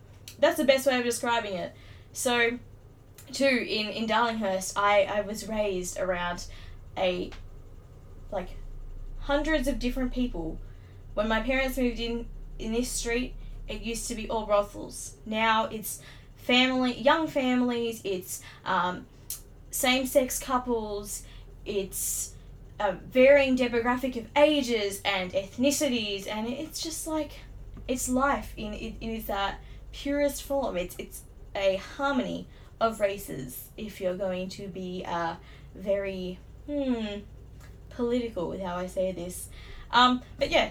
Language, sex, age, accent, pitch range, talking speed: English, female, 10-29, Australian, 195-265 Hz, 130 wpm